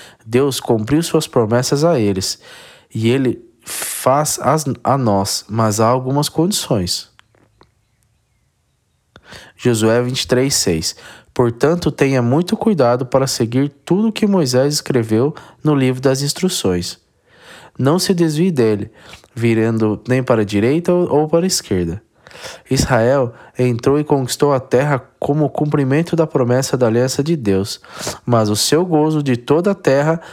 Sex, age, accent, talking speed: male, 20-39, Brazilian, 135 wpm